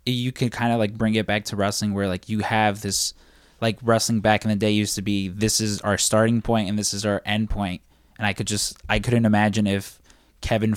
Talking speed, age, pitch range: 245 wpm, 20-39, 95-105 Hz